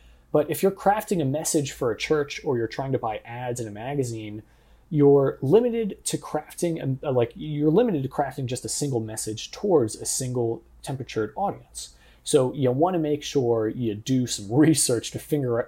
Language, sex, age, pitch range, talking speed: English, male, 20-39, 110-165 Hz, 190 wpm